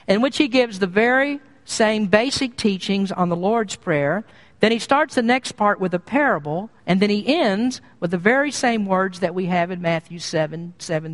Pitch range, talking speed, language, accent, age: 180-235 Hz, 205 wpm, English, American, 50-69